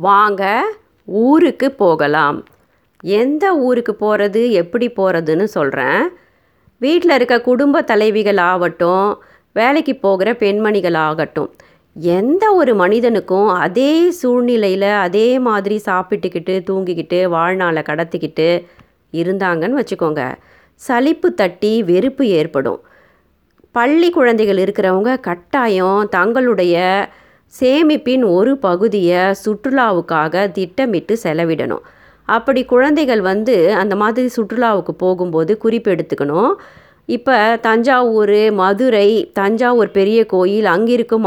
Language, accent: Tamil, native